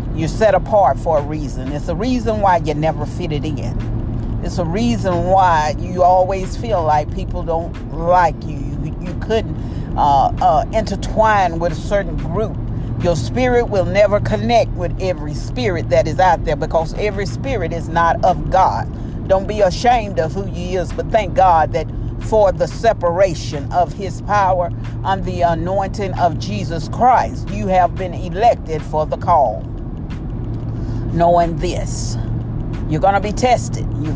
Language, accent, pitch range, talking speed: English, American, 115-180 Hz, 165 wpm